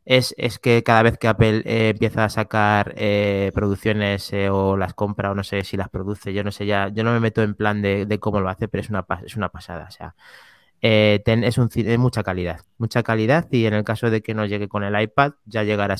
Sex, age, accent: male, 20-39, Spanish